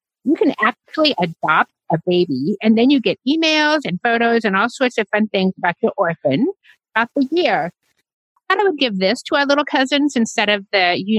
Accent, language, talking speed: American, English, 200 wpm